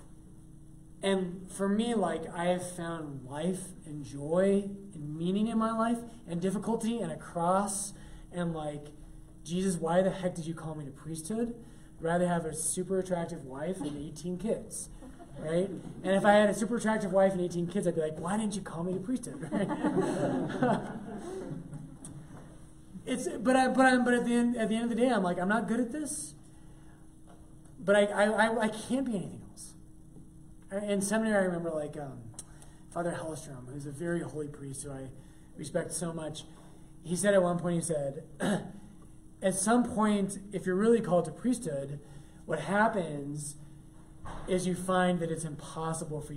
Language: English